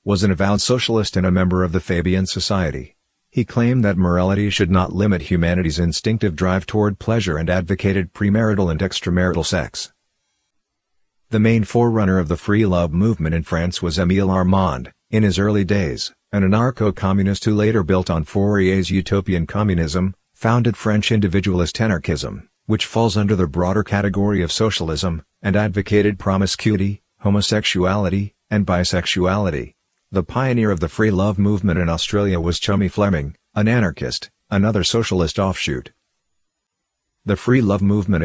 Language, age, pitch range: English, 50-69, 90-105 Hz